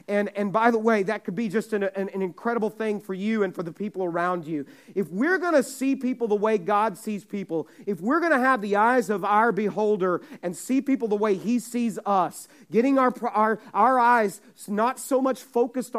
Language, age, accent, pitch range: English, 40-59, American, 200-240 Hz